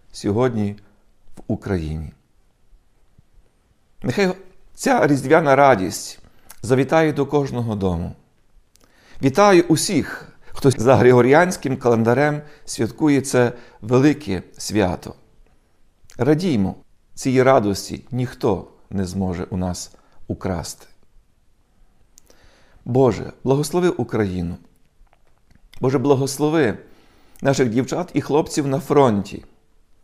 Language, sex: Ukrainian, male